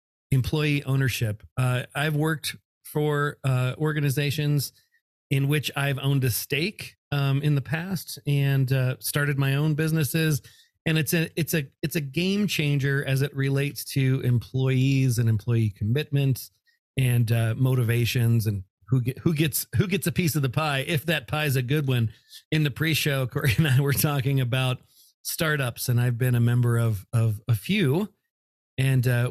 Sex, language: male, English